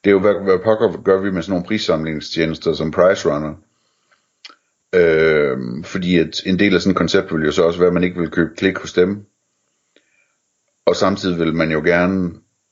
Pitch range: 80-100 Hz